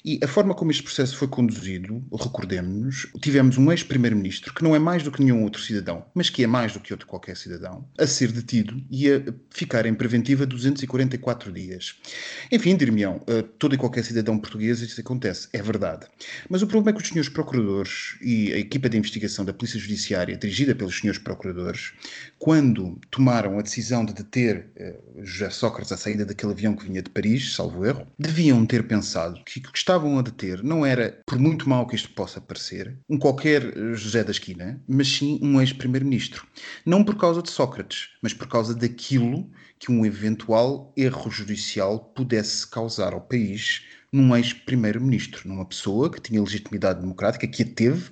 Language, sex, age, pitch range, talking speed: Portuguese, male, 30-49, 105-135 Hz, 180 wpm